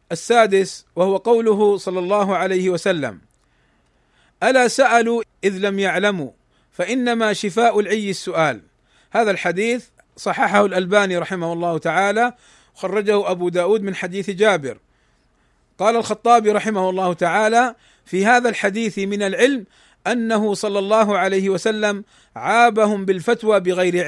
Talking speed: 115 wpm